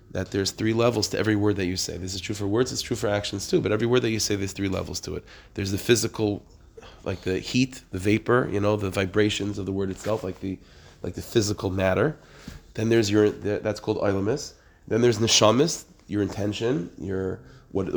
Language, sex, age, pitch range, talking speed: English, male, 30-49, 95-110 Hz, 225 wpm